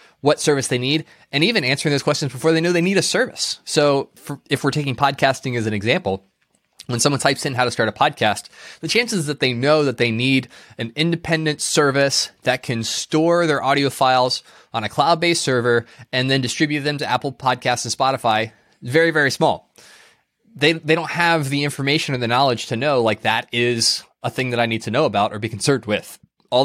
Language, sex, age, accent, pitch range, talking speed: English, male, 20-39, American, 120-145 Hz, 210 wpm